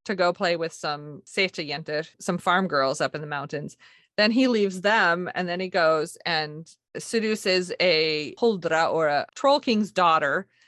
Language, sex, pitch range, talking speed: English, female, 150-195 Hz, 165 wpm